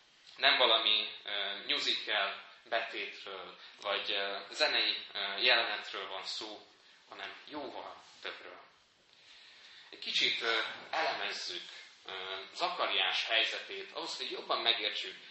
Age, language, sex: 20-39, Hungarian, male